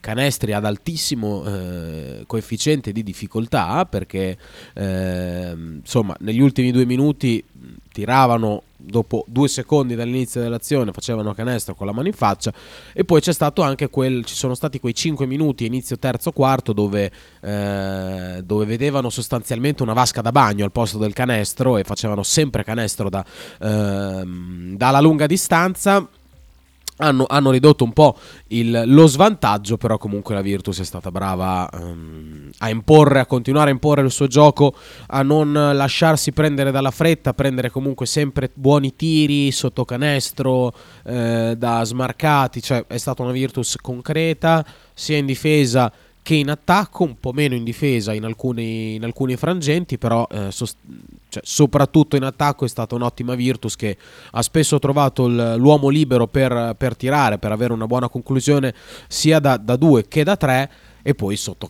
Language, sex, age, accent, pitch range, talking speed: Italian, male, 20-39, native, 105-140 Hz, 160 wpm